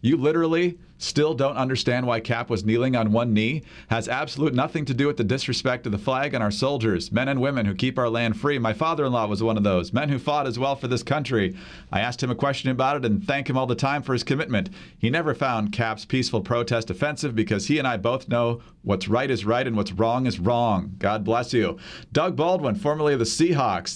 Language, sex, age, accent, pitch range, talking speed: English, male, 40-59, American, 110-140 Hz, 240 wpm